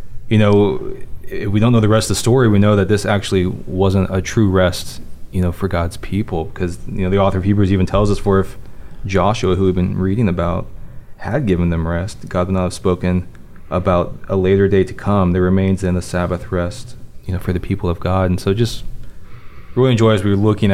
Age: 20-39